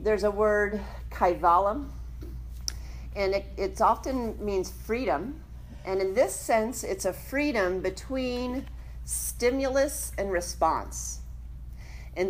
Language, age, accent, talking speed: English, 40-59, American, 105 wpm